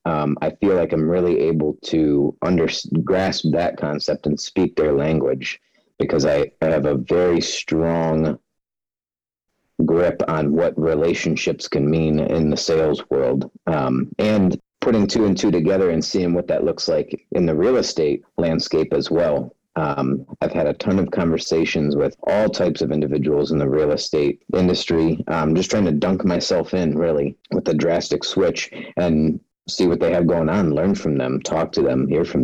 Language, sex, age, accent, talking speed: English, male, 40-59, American, 180 wpm